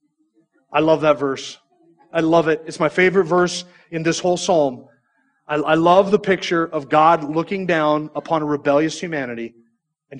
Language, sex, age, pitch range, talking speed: English, male, 30-49, 140-180 Hz, 170 wpm